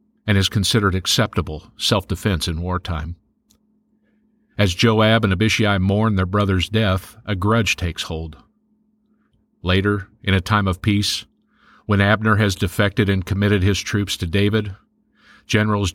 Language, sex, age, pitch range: English, male, 50-69, 95-115 Hz